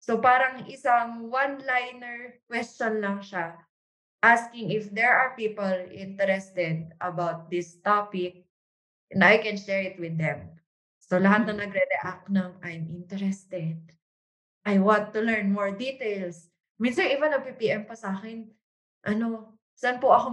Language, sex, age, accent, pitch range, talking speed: English, female, 20-39, Filipino, 195-265 Hz, 140 wpm